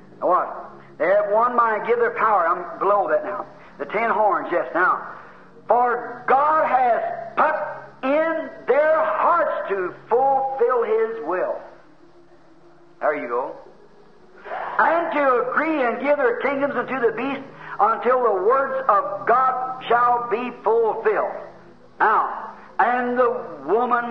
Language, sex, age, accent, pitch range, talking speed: English, male, 50-69, American, 175-265 Hz, 130 wpm